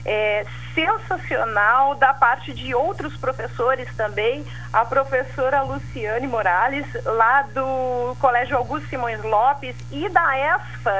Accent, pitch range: Brazilian, 250-350 Hz